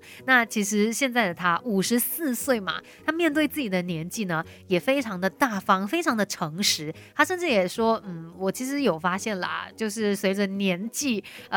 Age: 30-49